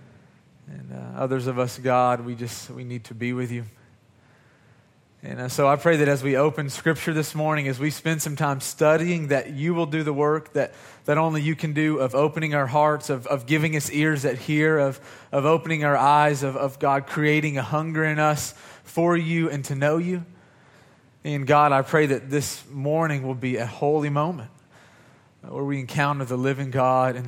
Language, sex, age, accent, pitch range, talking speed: English, male, 30-49, American, 125-150 Hz, 205 wpm